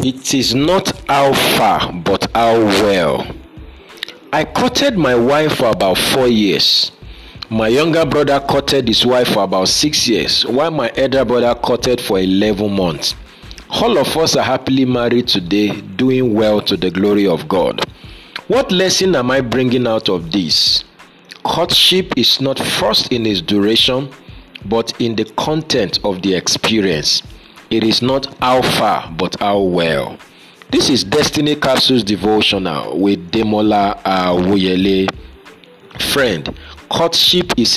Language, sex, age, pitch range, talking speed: English, male, 50-69, 100-135 Hz, 145 wpm